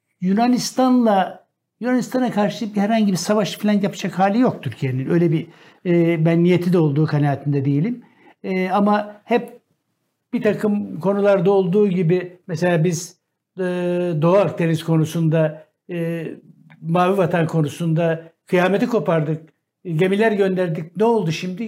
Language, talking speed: Turkish, 125 wpm